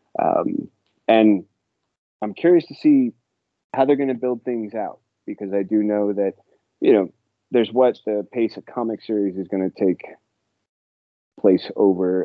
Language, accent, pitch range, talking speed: English, American, 95-115 Hz, 150 wpm